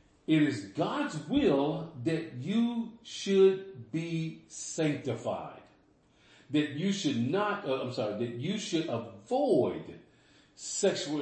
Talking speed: 110 wpm